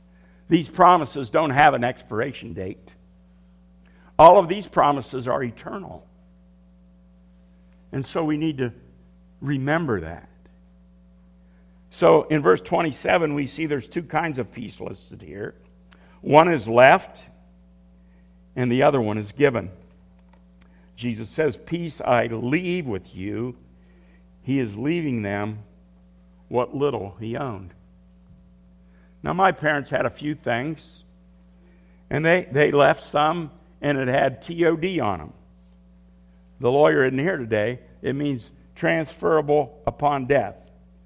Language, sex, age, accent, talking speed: English, male, 60-79, American, 125 wpm